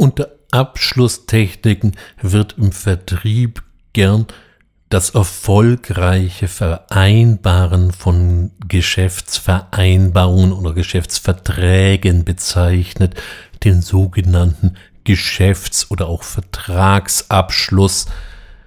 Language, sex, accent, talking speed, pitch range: German, male, German, 65 wpm, 90-115 Hz